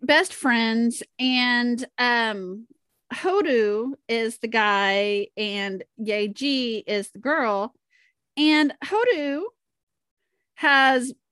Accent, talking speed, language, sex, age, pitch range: American, 85 wpm, English, female, 30-49, 210-275 Hz